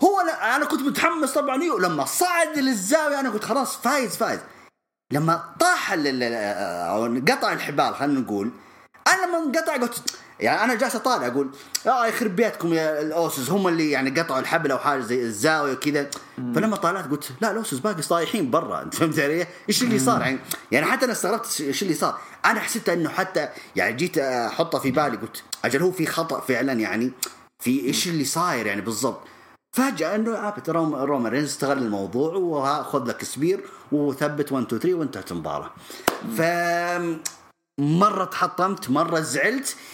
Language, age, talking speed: English, 30-49, 155 wpm